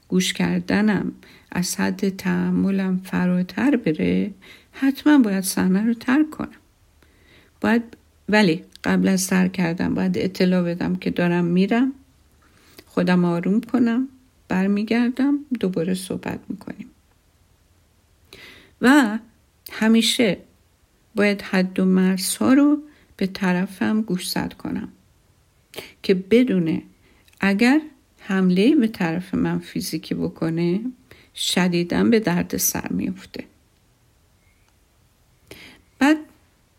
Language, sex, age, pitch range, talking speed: Persian, female, 50-69, 170-220 Hz, 95 wpm